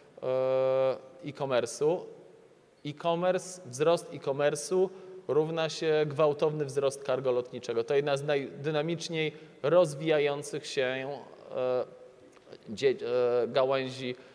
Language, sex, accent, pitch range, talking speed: Polish, male, native, 130-165 Hz, 70 wpm